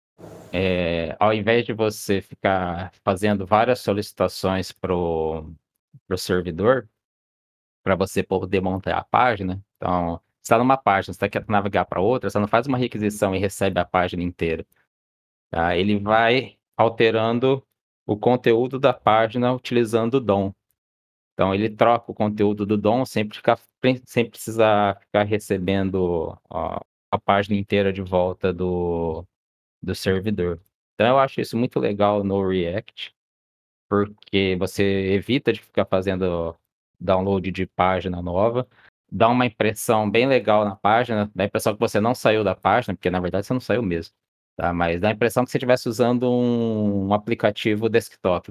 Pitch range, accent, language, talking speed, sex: 95-115 Hz, Brazilian, Portuguese, 155 wpm, male